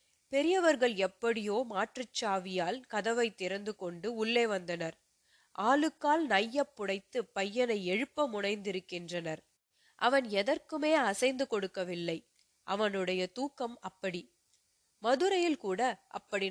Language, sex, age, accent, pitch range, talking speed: Tamil, female, 30-49, native, 185-255 Hz, 75 wpm